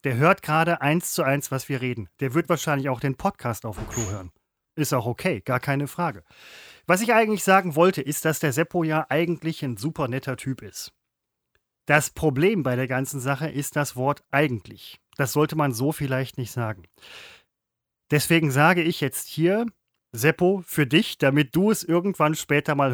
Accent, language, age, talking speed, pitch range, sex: German, German, 30-49, 190 wpm, 135-170 Hz, male